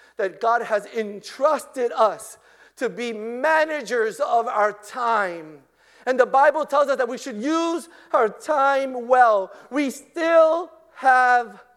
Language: English